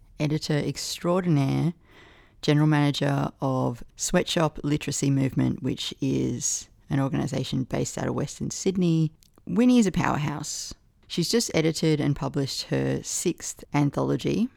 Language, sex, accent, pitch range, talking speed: English, female, Australian, 130-165 Hz, 120 wpm